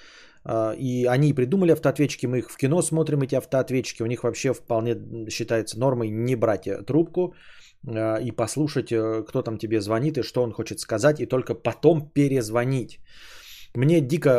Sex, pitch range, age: male, 120-165 Hz, 20-39